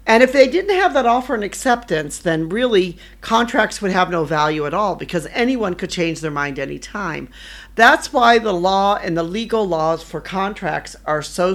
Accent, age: American, 50-69